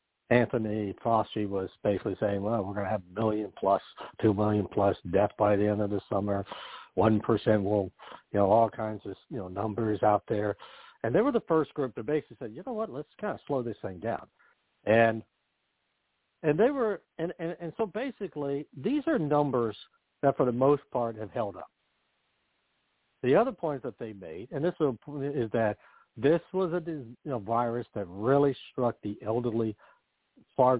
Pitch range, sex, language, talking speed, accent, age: 105-140 Hz, male, English, 190 wpm, American, 60-79